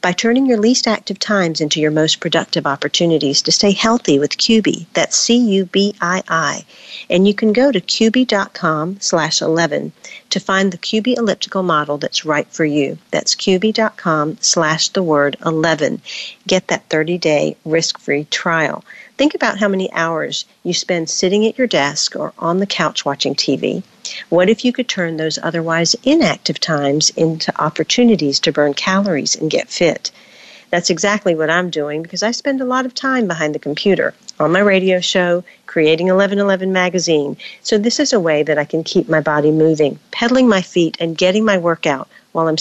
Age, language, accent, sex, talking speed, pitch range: 50-69, English, American, female, 175 wpm, 160-215 Hz